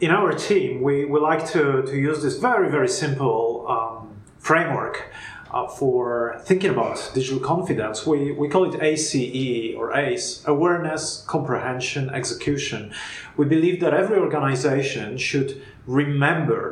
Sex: male